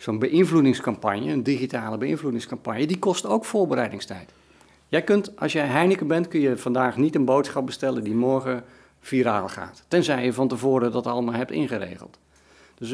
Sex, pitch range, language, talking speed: male, 115-150 Hz, Dutch, 160 wpm